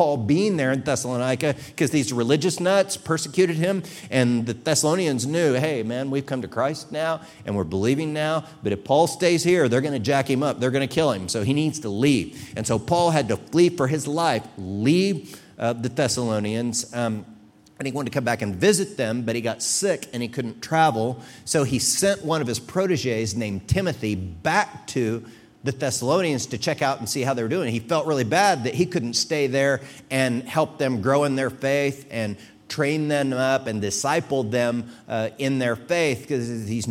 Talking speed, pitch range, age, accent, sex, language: 210 wpm, 115-155 Hz, 50-69, American, male, English